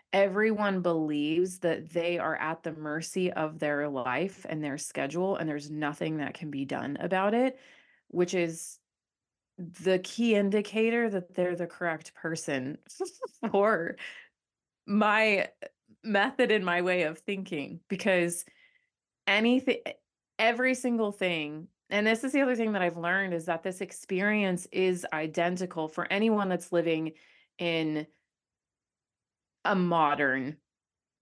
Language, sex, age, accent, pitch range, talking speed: English, female, 30-49, American, 150-190 Hz, 130 wpm